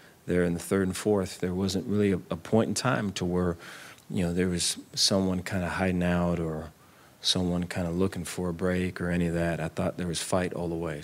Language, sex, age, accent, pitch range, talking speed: English, male, 40-59, American, 80-95 Hz, 245 wpm